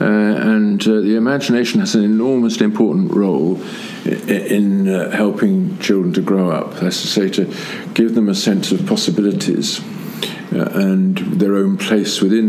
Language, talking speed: English, 165 wpm